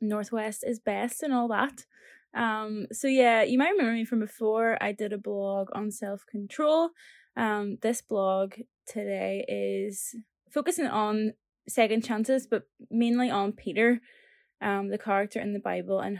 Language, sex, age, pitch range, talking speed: English, female, 10-29, 200-245 Hz, 150 wpm